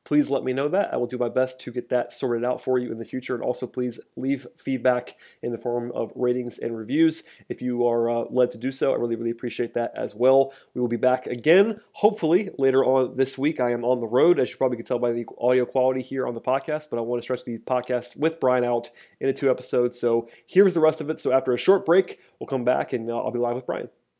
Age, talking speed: 30-49, 275 wpm